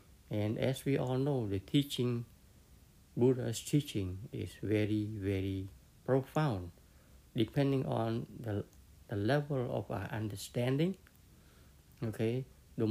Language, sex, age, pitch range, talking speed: English, male, 60-79, 100-130 Hz, 105 wpm